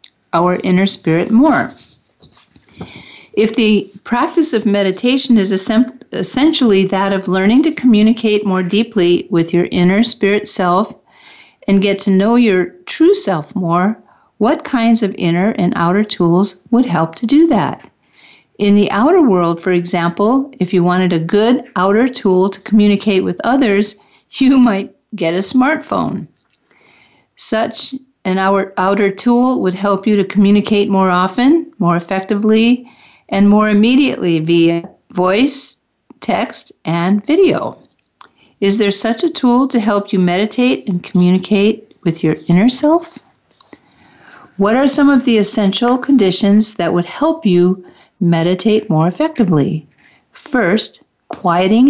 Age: 50-69